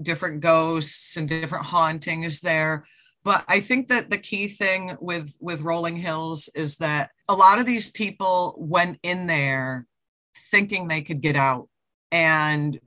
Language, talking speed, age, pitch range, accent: English, 155 wpm, 40-59, 150-200 Hz, American